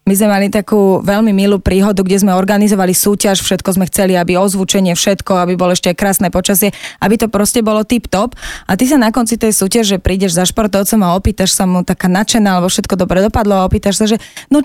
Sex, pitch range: female, 180-215 Hz